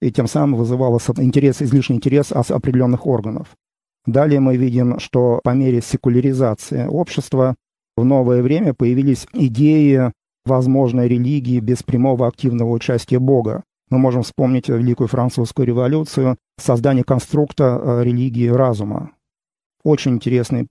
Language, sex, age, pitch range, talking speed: Russian, male, 40-59, 120-135 Hz, 115 wpm